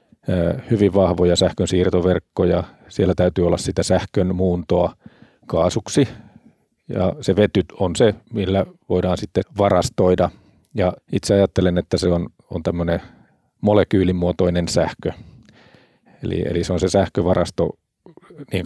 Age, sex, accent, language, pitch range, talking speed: 40-59, male, native, Finnish, 90-100 Hz, 120 wpm